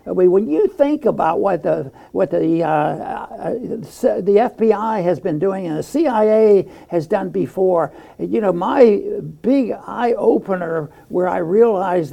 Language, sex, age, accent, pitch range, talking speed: English, male, 60-79, American, 170-215 Hz, 155 wpm